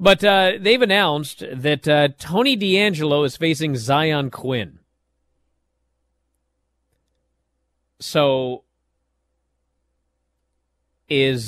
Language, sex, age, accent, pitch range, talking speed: English, male, 40-59, American, 100-155 Hz, 75 wpm